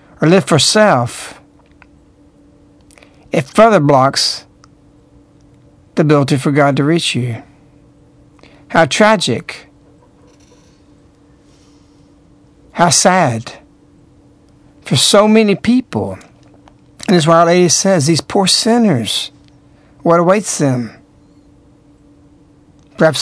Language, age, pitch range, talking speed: English, 60-79, 145-190 Hz, 90 wpm